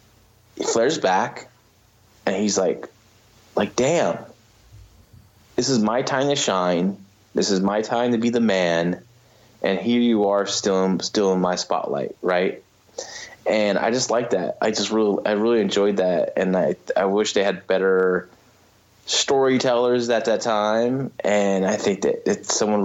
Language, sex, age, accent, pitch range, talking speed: English, male, 20-39, American, 95-120 Hz, 165 wpm